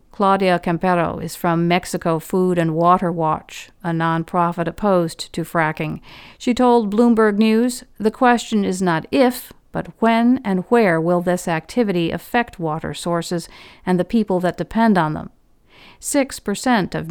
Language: English